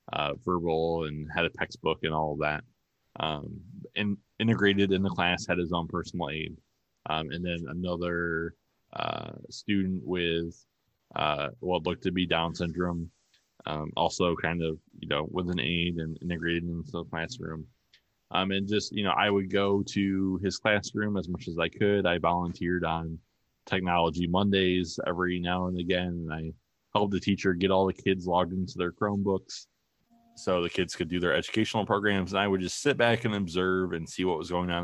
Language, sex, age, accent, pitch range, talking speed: English, male, 20-39, American, 85-100 Hz, 185 wpm